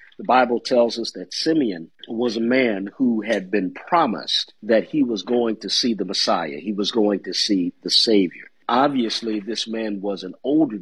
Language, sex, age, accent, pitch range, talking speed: English, male, 50-69, American, 105-135 Hz, 190 wpm